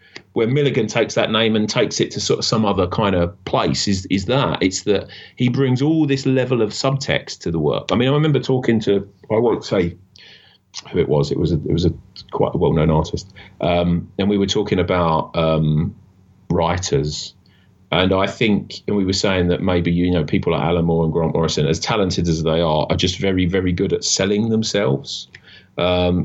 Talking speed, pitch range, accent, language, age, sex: 215 wpm, 90-110 Hz, British, English, 30-49, male